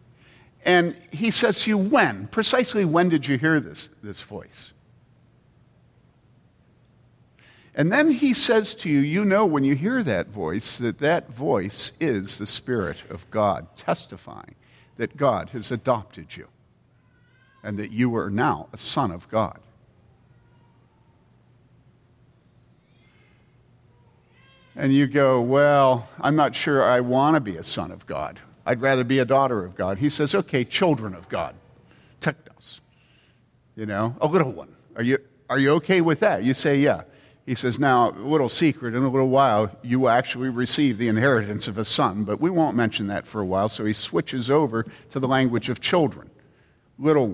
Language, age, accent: English, 50-69, American